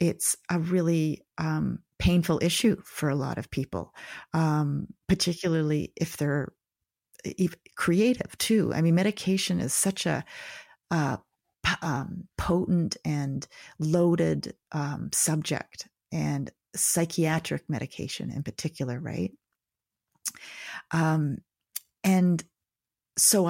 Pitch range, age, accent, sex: 145-175 Hz, 40-59, American, female